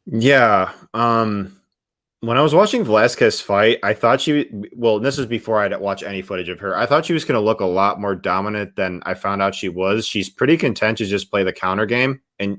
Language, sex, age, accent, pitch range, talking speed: English, male, 20-39, American, 95-135 Hz, 230 wpm